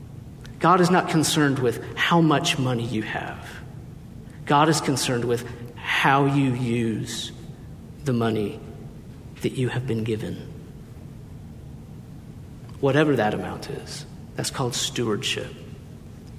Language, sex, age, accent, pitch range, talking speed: English, male, 50-69, American, 120-150 Hz, 115 wpm